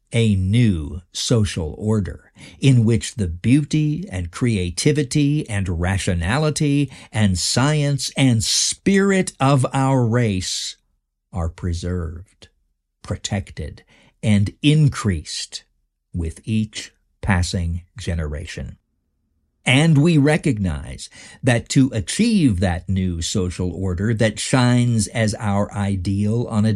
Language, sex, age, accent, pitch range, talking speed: English, male, 50-69, American, 90-125 Hz, 100 wpm